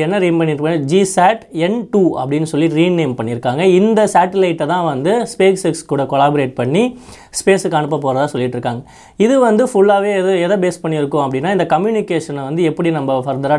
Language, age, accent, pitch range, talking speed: Tamil, 20-39, native, 145-190 Hz, 150 wpm